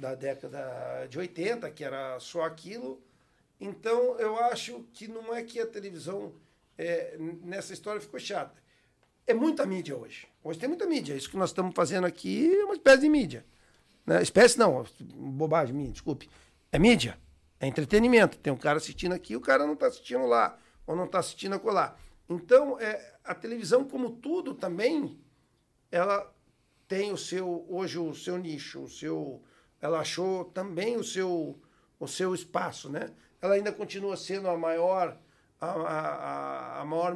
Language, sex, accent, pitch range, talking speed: Portuguese, male, Brazilian, 150-210 Hz, 155 wpm